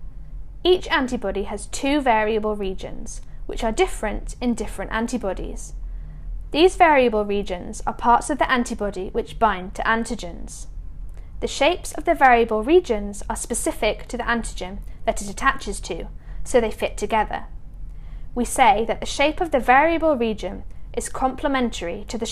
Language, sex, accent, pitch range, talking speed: English, female, British, 200-260 Hz, 150 wpm